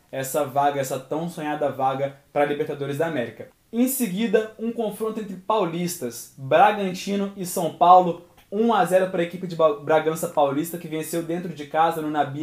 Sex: male